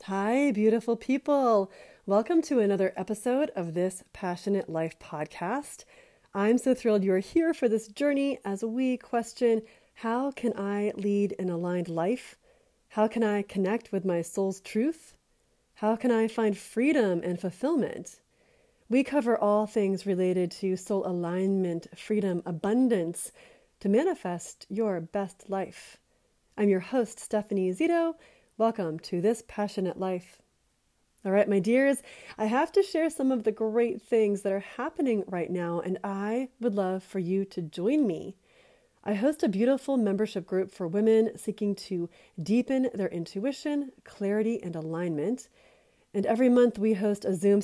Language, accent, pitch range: English, American, 190-250 Hz